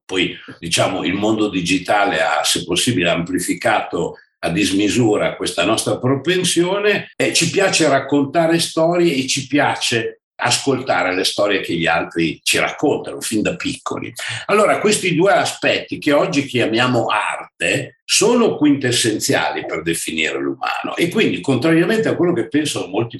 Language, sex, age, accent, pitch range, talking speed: Italian, male, 60-79, native, 130-180 Hz, 140 wpm